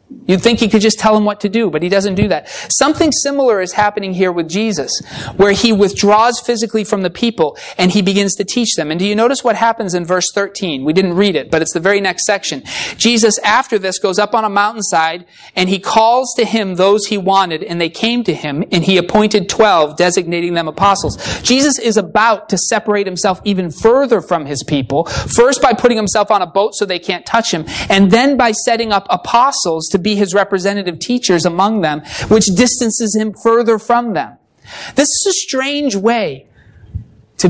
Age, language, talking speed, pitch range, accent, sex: 30-49, English, 210 wpm, 160-220 Hz, American, male